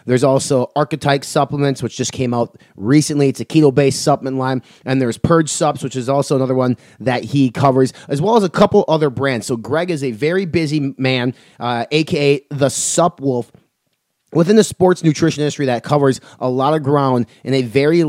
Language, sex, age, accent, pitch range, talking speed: English, male, 30-49, American, 125-160 Hz, 200 wpm